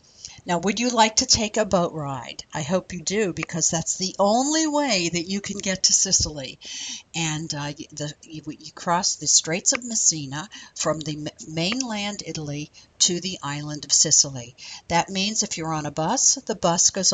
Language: English